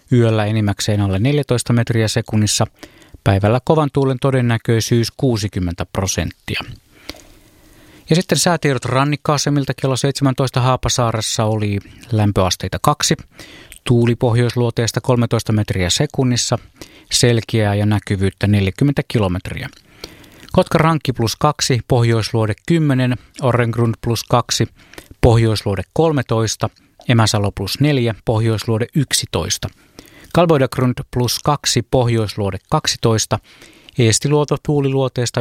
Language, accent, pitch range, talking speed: Finnish, native, 110-135 Hz, 90 wpm